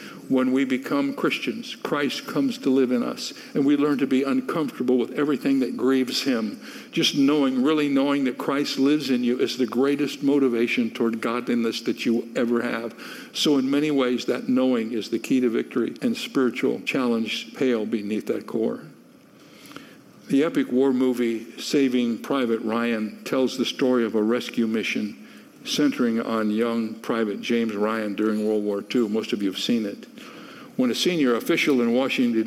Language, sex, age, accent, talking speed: English, male, 60-79, American, 175 wpm